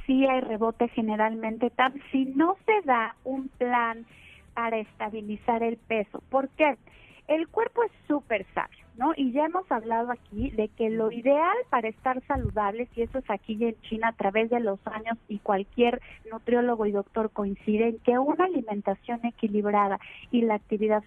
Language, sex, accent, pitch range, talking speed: Spanish, female, Mexican, 220-285 Hz, 170 wpm